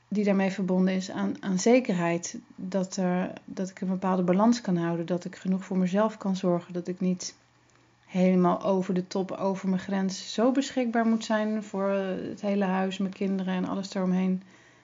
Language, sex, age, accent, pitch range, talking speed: Dutch, female, 30-49, Dutch, 185-230 Hz, 185 wpm